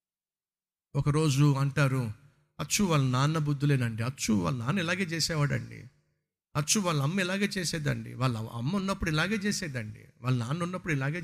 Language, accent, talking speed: Telugu, native, 140 wpm